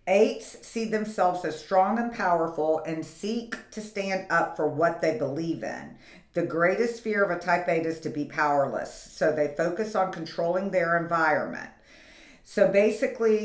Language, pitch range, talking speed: English, 170-210 Hz, 165 wpm